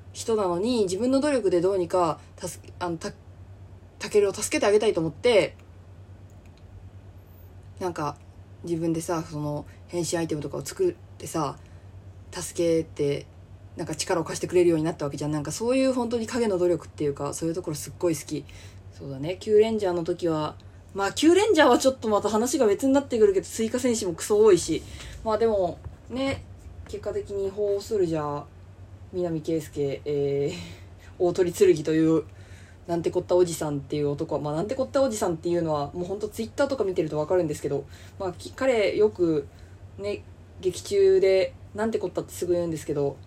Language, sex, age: Japanese, female, 20-39